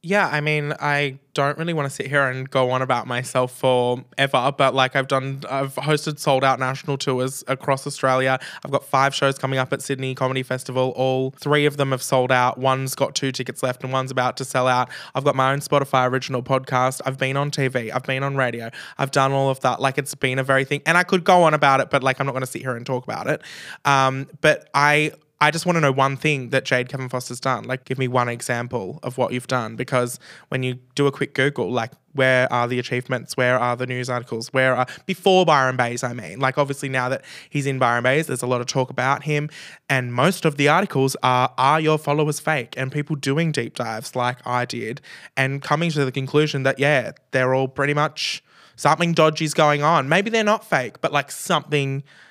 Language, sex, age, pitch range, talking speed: English, male, 20-39, 130-145 Hz, 235 wpm